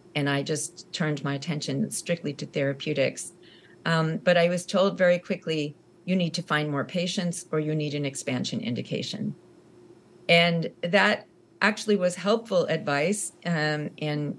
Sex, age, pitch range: female, 40-59, 140-175 Hz